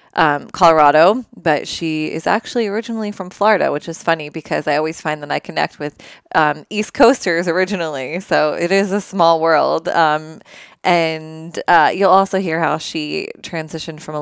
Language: English